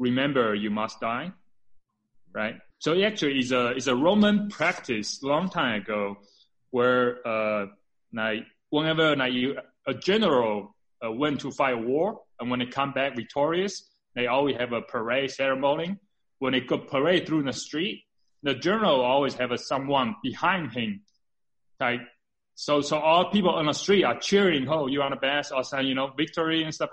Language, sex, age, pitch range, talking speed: English, male, 30-49, 120-160 Hz, 180 wpm